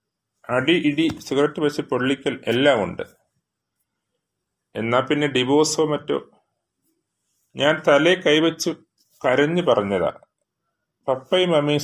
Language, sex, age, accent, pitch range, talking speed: Malayalam, male, 30-49, native, 120-155 Hz, 90 wpm